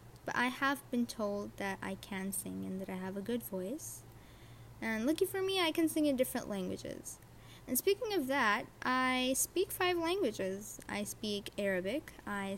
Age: 20-39